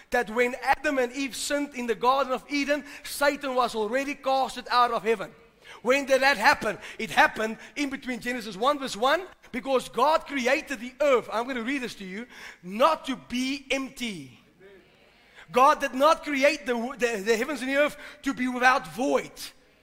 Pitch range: 245-290 Hz